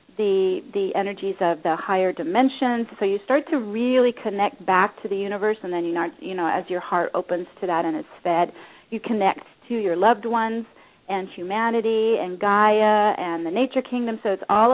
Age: 40-59